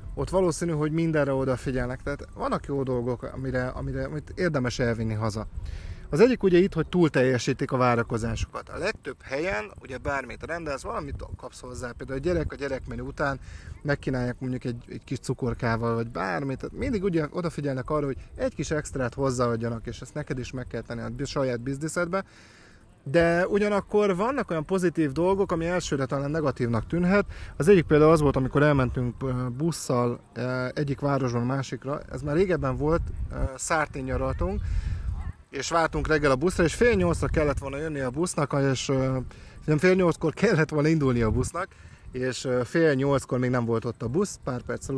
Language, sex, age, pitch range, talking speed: Hungarian, male, 30-49, 120-155 Hz, 170 wpm